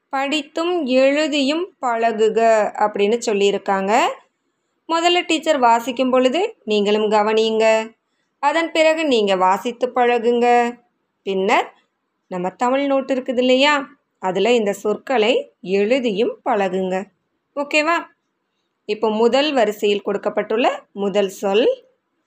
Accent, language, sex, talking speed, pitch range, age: native, Tamil, female, 90 wpm, 210-280 Hz, 20-39